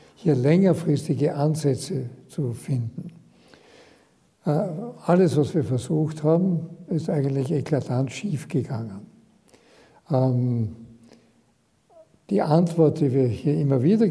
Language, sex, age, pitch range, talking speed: German, male, 60-79, 135-160 Hz, 95 wpm